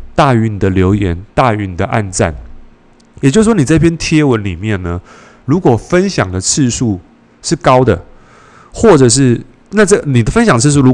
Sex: male